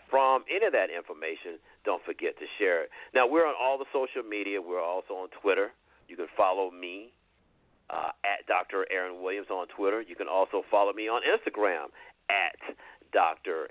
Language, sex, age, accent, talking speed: English, male, 50-69, American, 180 wpm